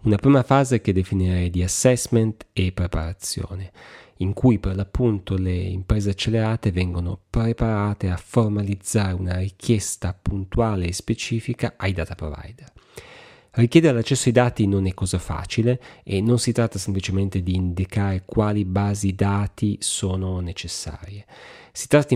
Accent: native